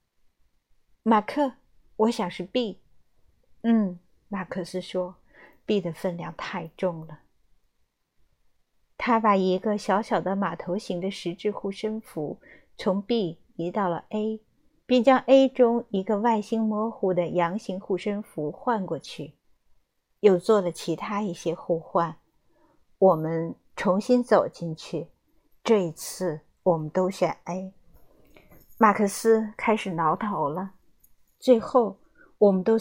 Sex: female